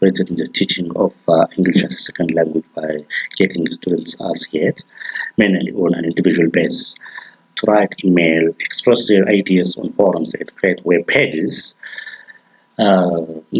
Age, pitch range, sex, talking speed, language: 50-69, 85-100 Hz, male, 145 wpm, Russian